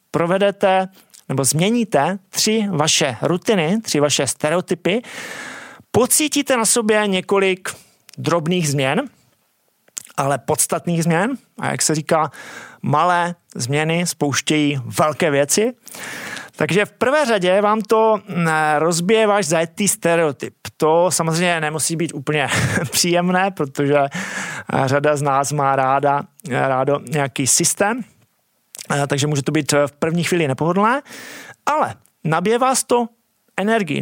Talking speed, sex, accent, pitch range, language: 115 wpm, male, native, 150-215 Hz, Czech